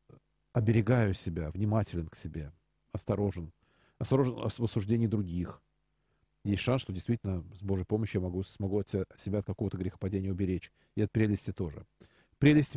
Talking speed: 135 wpm